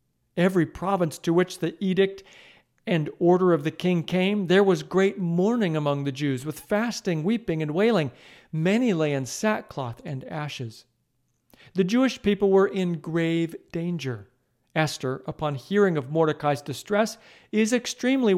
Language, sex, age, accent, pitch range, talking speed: English, male, 50-69, American, 140-190 Hz, 145 wpm